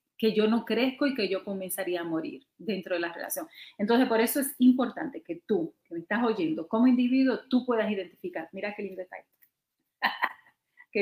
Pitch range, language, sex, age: 190-245 Hz, Spanish, female, 40-59